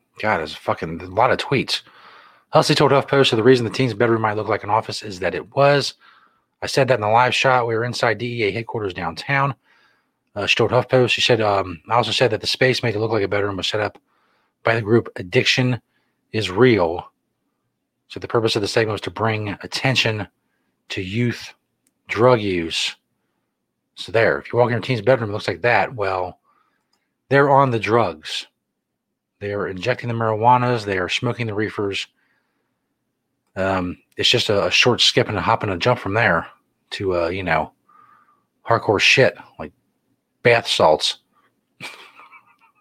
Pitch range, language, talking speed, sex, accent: 105-130 Hz, English, 190 wpm, male, American